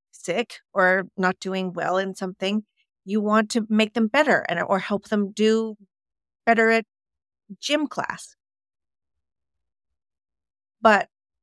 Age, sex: 50-69, female